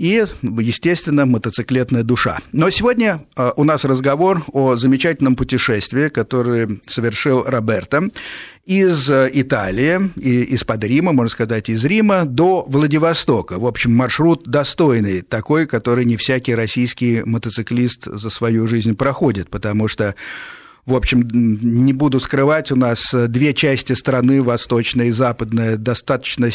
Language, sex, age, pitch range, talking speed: Russian, male, 50-69, 115-145 Hz, 125 wpm